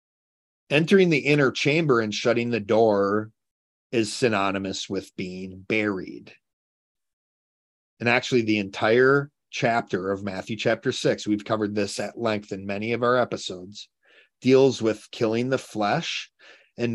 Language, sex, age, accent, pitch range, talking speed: English, male, 40-59, American, 100-125 Hz, 135 wpm